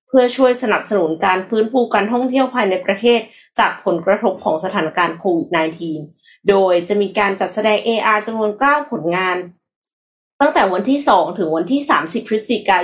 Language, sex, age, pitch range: Thai, female, 20-39, 185-240 Hz